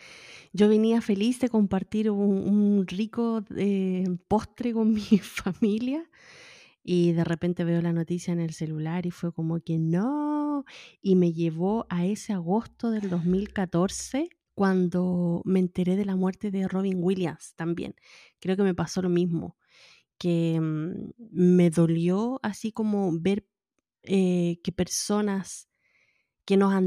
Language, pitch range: Spanish, 180-220 Hz